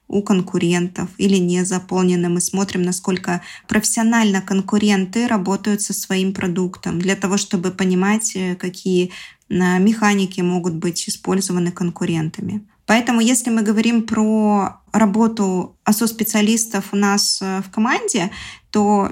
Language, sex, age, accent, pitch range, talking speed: Russian, female, 20-39, native, 180-210 Hz, 115 wpm